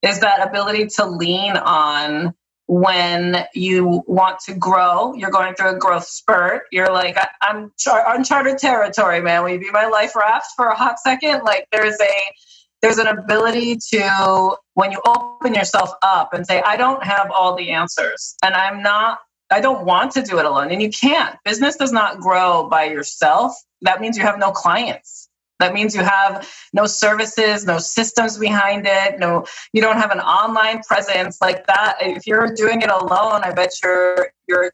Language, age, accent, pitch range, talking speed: English, 20-39, American, 180-215 Hz, 185 wpm